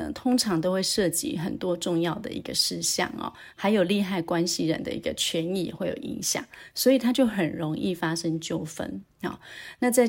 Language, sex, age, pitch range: Chinese, female, 30-49, 175-225 Hz